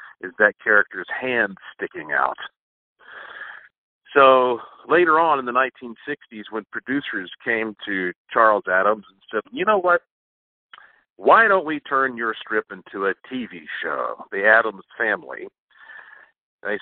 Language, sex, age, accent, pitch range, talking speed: English, male, 50-69, American, 100-135 Hz, 130 wpm